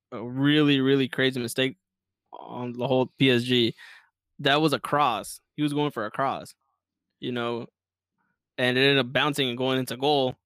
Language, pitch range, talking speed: English, 125-155 Hz, 170 wpm